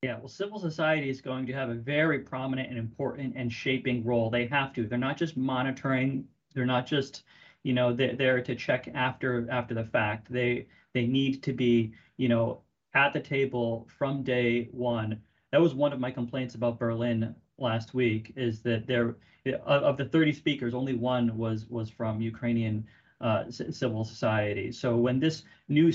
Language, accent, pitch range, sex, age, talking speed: English, American, 120-145 Hz, male, 30-49, 185 wpm